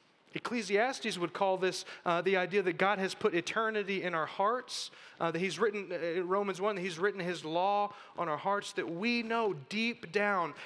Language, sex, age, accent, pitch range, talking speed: English, male, 30-49, American, 140-200 Hz, 190 wpm